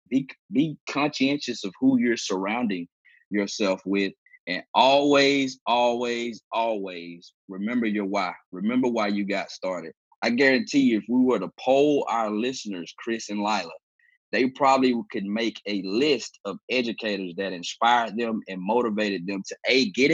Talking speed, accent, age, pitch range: 150 wpm, American, 20-39, 95-120 Hz